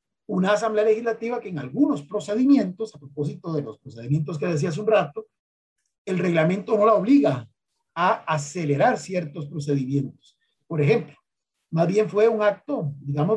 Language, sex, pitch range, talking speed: Spanish, male, 145-215 Hz, 150 wpm